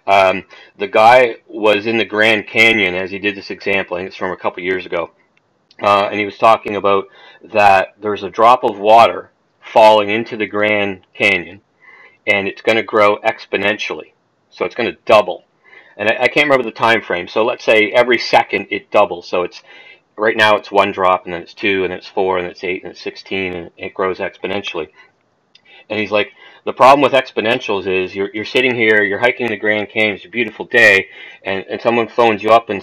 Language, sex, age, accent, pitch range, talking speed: English, male, 40-59, American, 100-110 Hz, 210 wpm